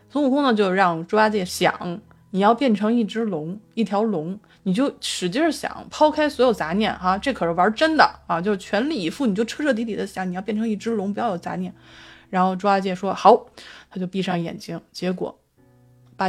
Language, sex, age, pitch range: Chinese, female, 20-39, 185-245 Hz